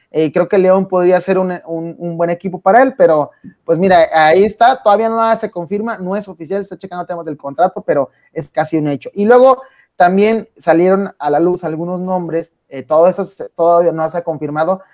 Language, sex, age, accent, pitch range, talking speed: English, male, 30-49, Mexican, 150-190 Hz, 210 wpm